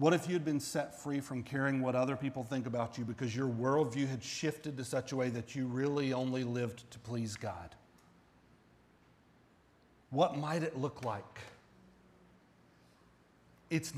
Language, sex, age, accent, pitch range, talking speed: English, male, 40-59, American, 130-190 Hz, 160 wpm